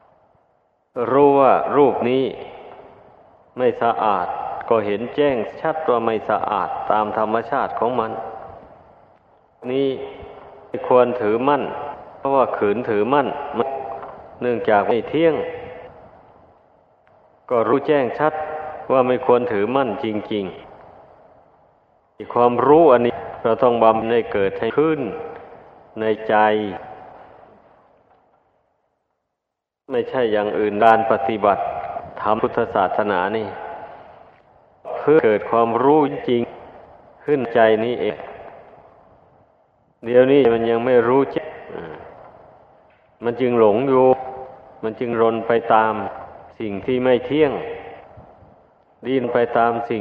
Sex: male